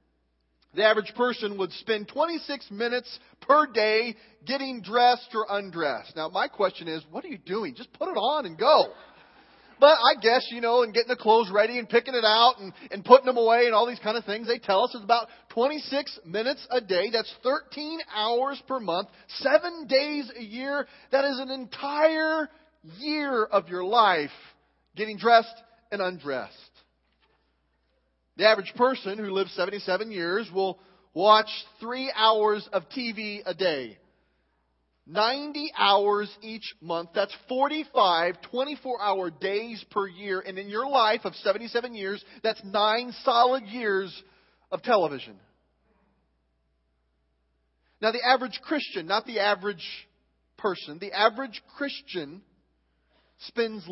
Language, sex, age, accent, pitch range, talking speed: English, male, 40-59, American, 190-250 Hz, 145 wpm